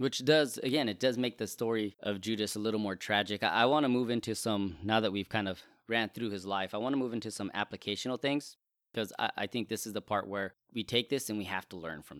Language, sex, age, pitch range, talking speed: English, male, 20-39, 95-120 Hz, 275 wpm